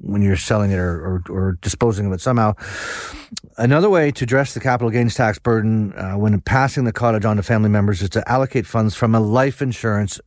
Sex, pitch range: male, 100-125 Hz